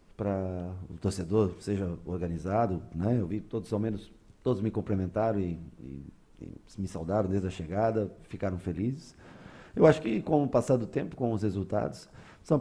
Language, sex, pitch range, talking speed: Portuguese, male, 95-125 Hz, 170 wpm